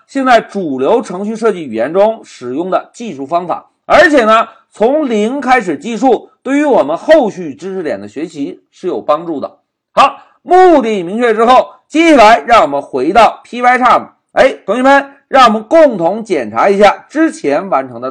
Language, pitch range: Chinese, 210-295 Hz